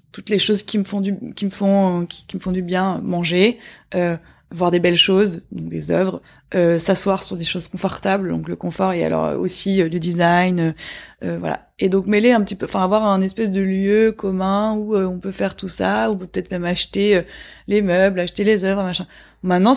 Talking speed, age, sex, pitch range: 230 wpm, 20-39, female, 175-205 Hz